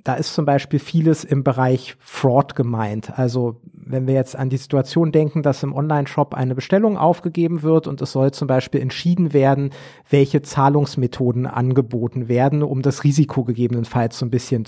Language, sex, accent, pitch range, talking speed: German, male, German, 135-170 Hz, 170 wpm